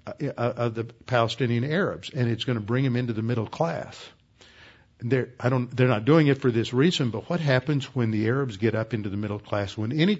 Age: 60-79